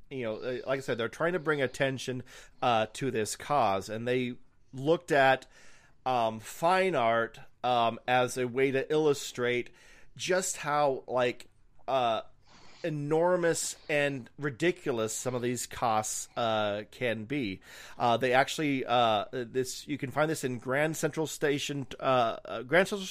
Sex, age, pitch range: male, 40-59, 115-150 Hz